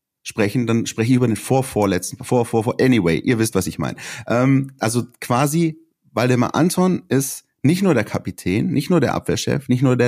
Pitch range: 110-135 Hz